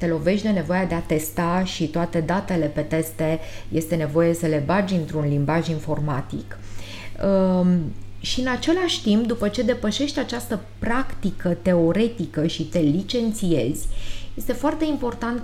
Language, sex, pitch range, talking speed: Romanian, female, 150-215 Hz, 140 wpm